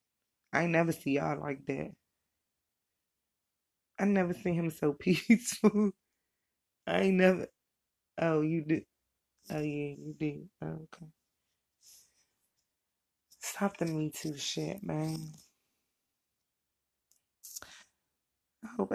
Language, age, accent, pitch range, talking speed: English, 20-39, American, 145-180 Hz, 105 wpm